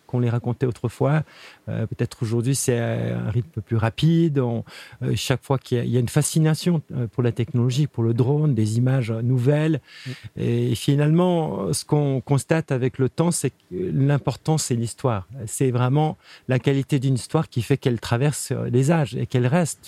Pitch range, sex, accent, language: 120-150 Hz, male, French, French